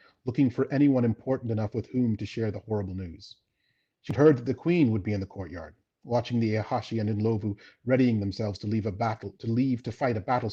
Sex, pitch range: male, 105-130 Hz